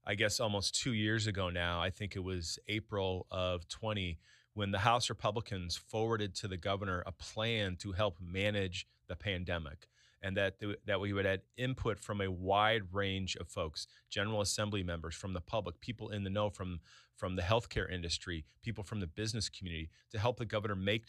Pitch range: 95-110 Hz